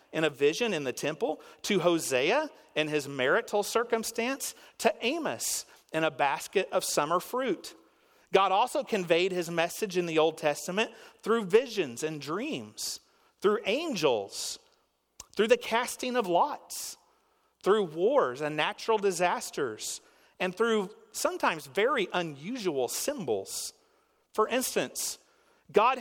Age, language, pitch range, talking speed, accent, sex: 40-59, English, 185-290 Hz, 125 wpm, American, male